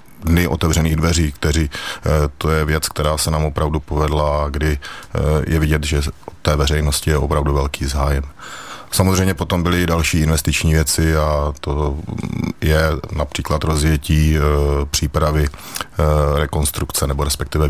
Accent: native